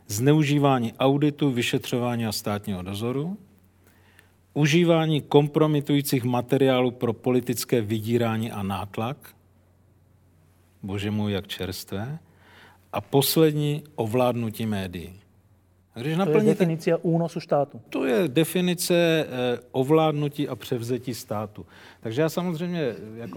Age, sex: 40-59, male